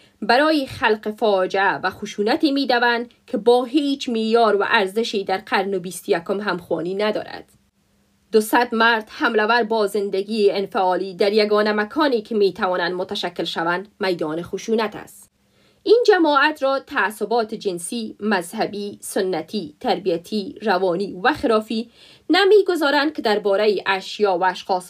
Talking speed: 125 wpm